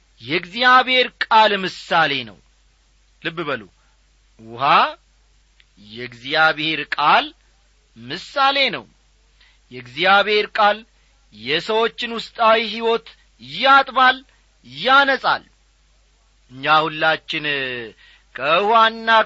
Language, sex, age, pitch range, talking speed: Amharic, male, 40-59, 170-220 Hz, 55 wpm